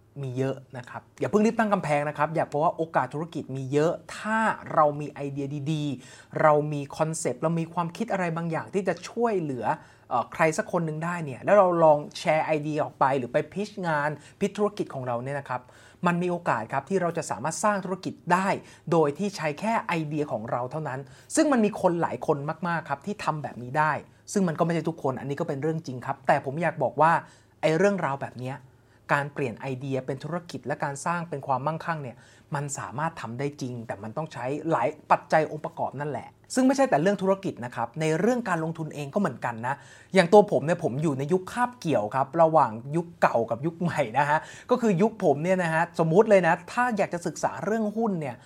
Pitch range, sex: 145-190 Hz, male